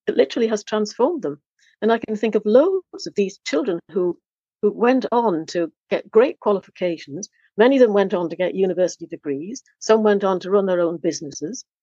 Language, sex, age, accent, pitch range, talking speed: English, female, 60-79, British, 170-215 Hz, 200 wpm